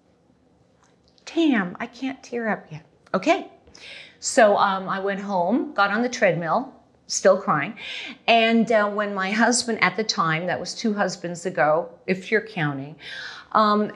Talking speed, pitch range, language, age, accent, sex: 150 wpm, 170-225 Hz, English, 40-59, American, female